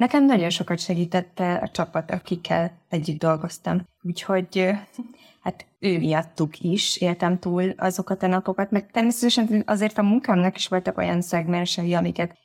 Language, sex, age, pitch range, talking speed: Hungarian, female, 20-39, 170-205 Hz, 140 wpm